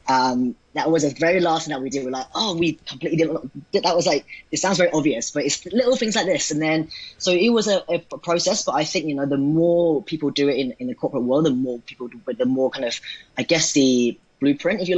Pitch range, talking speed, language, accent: 125-155 Hz, 265 wpm, English, British